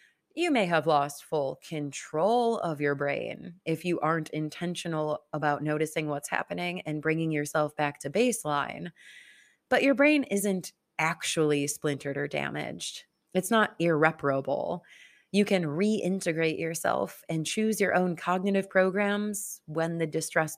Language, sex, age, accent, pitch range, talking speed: English, female, 30-49, American, 150-205 Hz, 135 wpm